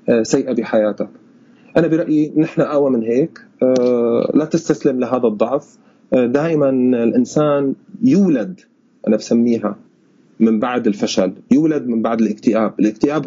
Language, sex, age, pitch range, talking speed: Arabic, male, 30-49, 120-165 Hz, 115 wpm